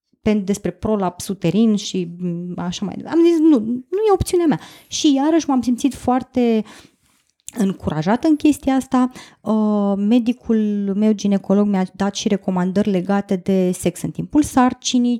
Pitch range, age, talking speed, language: 200-260 Hz, 20-39, 140 wpm, Romanian